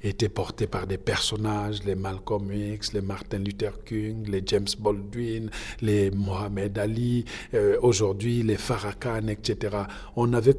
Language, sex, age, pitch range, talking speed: French, male, 50-69, 115-155 Hz, 140 wpm